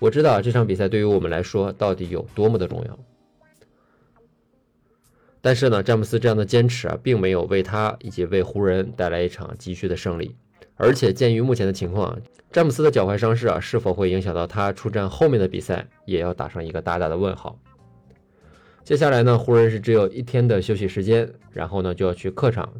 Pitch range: 90-115 Hz